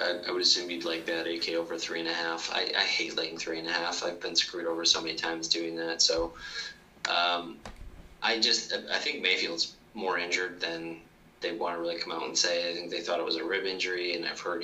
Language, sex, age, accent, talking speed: English, male, 20-39, American, 245 wpm